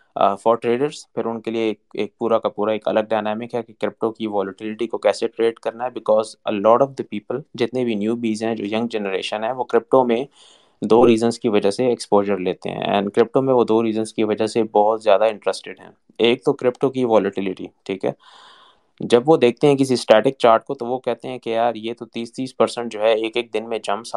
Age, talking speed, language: 20-39, 185 wpm, Urdu